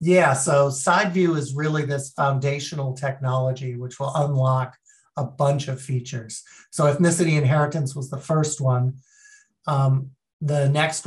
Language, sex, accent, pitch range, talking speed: English, male, American, 130-150 Hz, 135 wpm